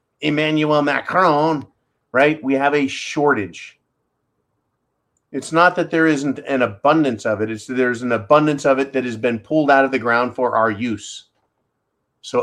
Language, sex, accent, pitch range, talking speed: English, male, American, 135-180 Hz, 170 wpm